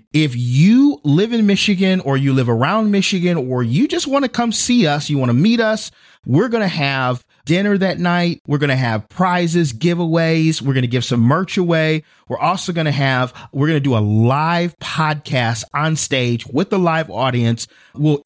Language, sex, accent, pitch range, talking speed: English, male, American, 135-180 Hz, 205 wpm